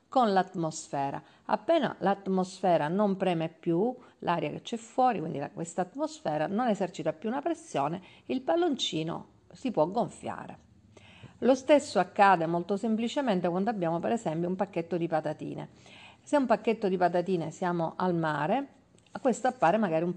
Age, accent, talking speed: 50-69, native, 145 wpm